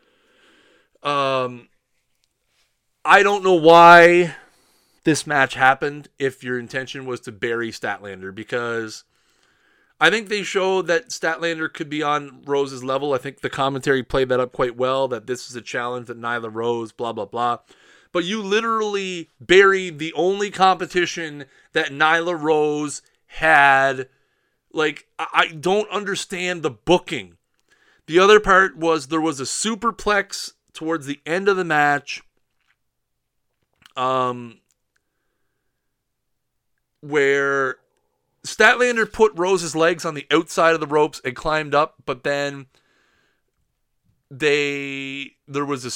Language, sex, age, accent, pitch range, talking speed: English, male, 30-49, American, 130-185 Hz, 130 wpm